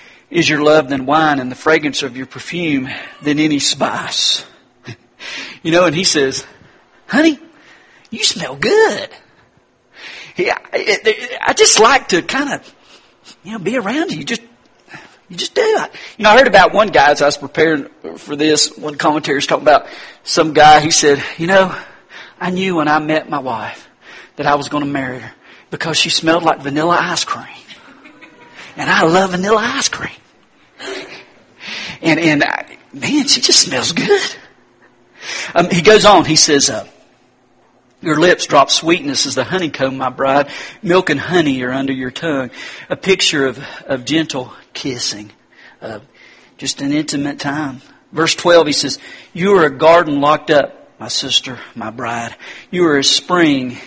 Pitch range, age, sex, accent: 140-180 Hz, 40-59, male, American